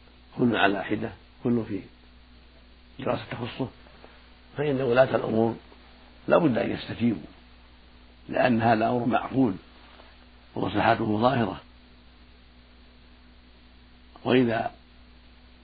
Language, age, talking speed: Arabic, 60-79, 75 wpm